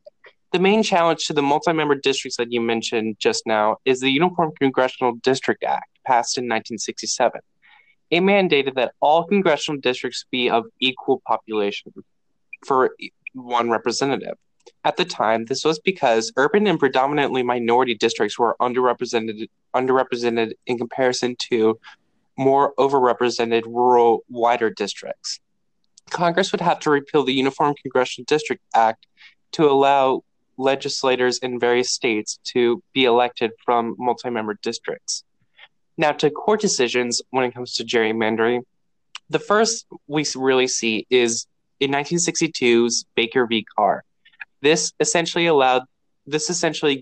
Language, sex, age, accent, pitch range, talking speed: English, male, 10-29, American, 120-150 Hz, 130 wpm